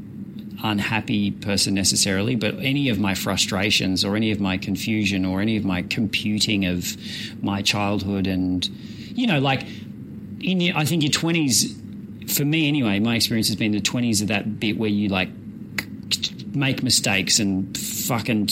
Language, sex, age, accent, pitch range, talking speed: English, male, 30-49, Australian, 95-115 Hz, 160 wpm